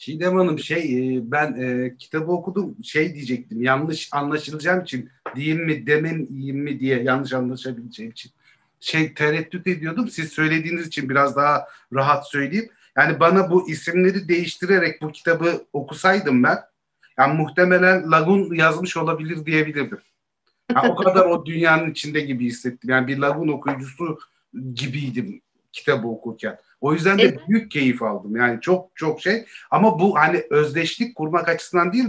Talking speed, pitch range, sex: 145 wpm, 135-180 Hz, male